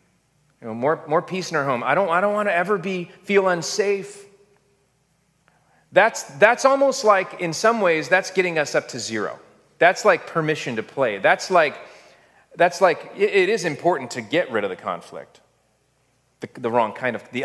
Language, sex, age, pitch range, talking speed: English, male, 30-49, 130-190 Hz, 190 wpm